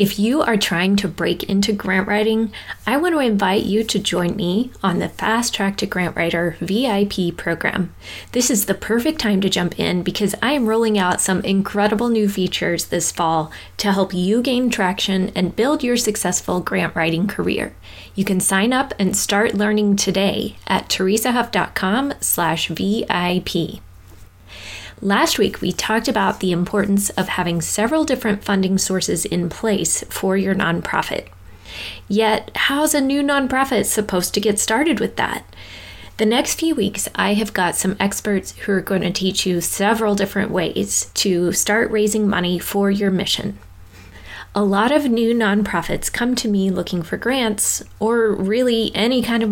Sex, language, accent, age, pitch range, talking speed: female, English, American, 20-39, 180-220 Hz, 165 wpm